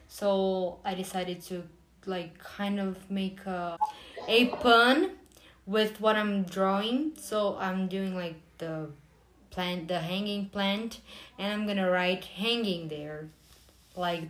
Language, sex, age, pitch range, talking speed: English, female, 20-39, 180-215 Hz, 135 wpm